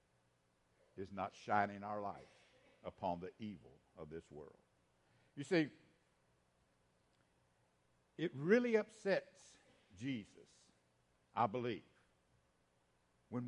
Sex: male